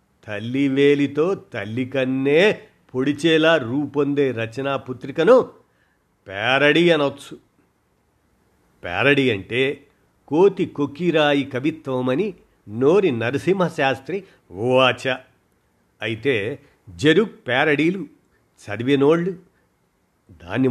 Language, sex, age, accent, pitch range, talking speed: Telugu, male, 50-69, native, 115-145 Hz, 65 wpm